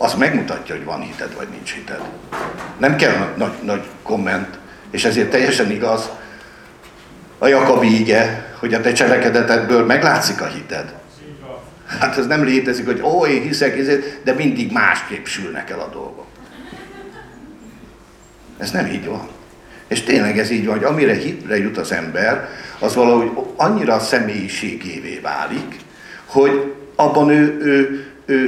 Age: 60-79